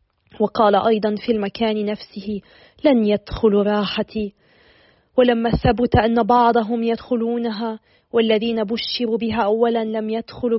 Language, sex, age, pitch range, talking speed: Arabic, female, 30-49, 210-230 Hz, 110 wpm